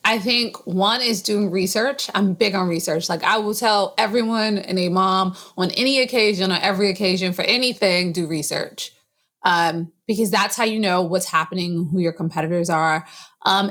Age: 30-49